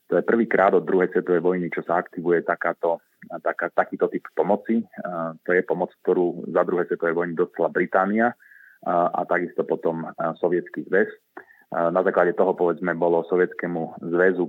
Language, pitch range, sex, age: Slovak, 85-95 Hz, male, 30-49